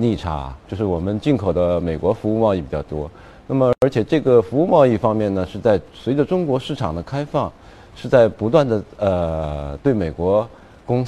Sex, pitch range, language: male, 90-130 Hz, Chinese